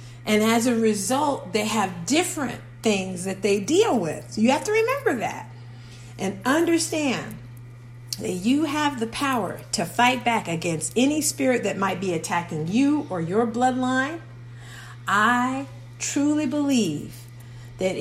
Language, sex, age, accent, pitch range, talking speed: English, female, 50-69, American, 170-240 Hz, 140 wpm